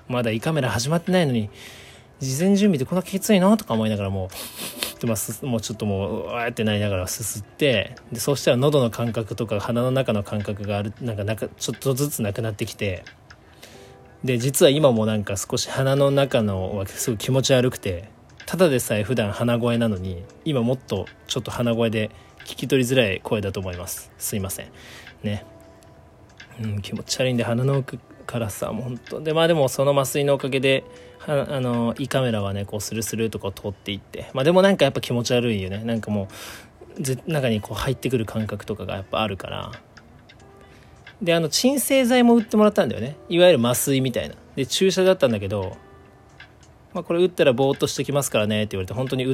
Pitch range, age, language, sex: 105-135 Hz, 20-39, Japanese, male